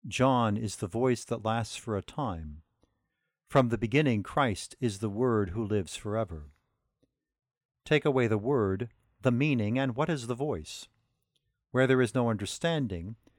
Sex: male